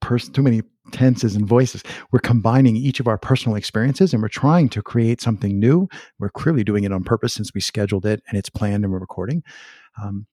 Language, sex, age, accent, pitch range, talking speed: English, male, 50-69, American, 105-130 Hz, 210 wpm